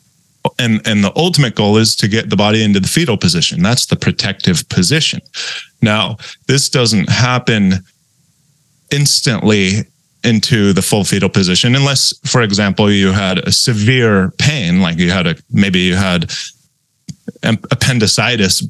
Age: 30-49